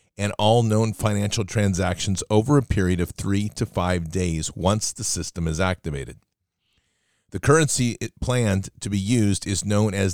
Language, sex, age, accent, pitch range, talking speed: English, male, 40-59, American, 90-110 Hz, 160 wpm